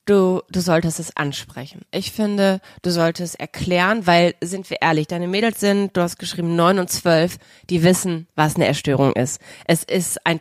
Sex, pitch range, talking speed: female, 165-210 Hz, 190 wpm